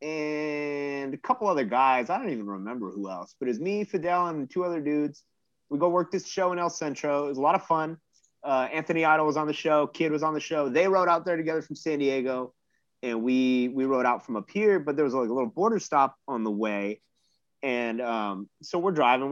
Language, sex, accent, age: English, male, American, 30-49